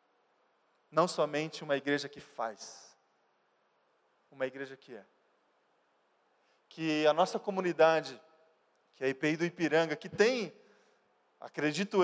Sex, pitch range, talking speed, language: male, 140-175 Hz, 115 wpm, Portuguese